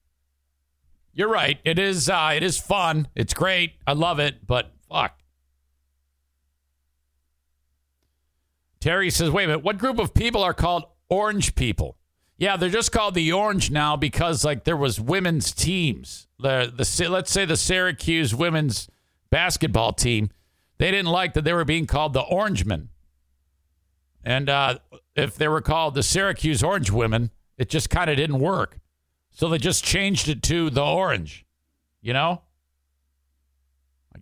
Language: English